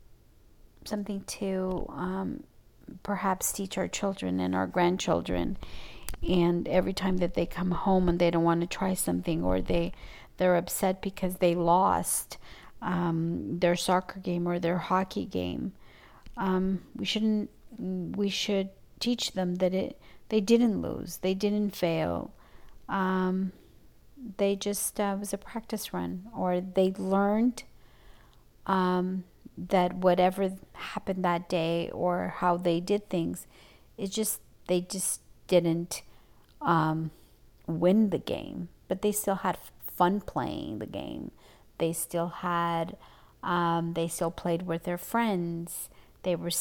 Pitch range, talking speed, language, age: 170-195 Hz, 135 wpm, English, 40-59